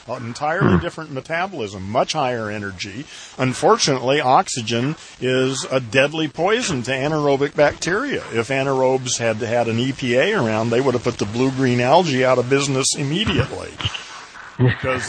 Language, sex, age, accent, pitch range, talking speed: English, male, 40-59, American, 115-135 Hz, 135 wpm